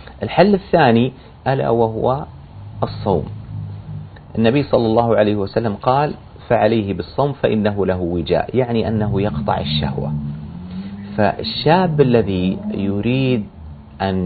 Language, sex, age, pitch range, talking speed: Arabic, male, 40-59, 95-130 Hz, 100 wpm